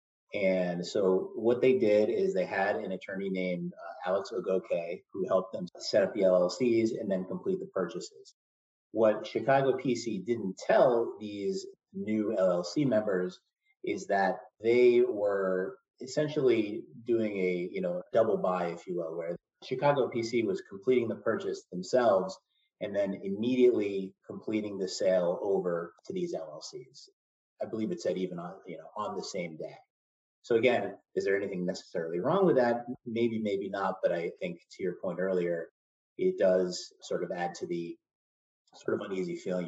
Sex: male